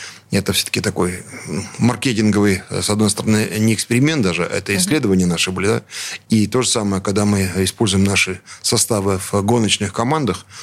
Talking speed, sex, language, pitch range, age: 150 wpm, male, Russian, 95-110 Hz, 20-39